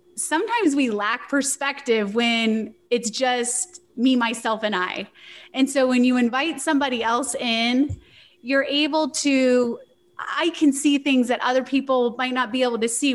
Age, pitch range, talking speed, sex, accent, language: 30-49, 230-310 Hz, 160 wpm, female, American, English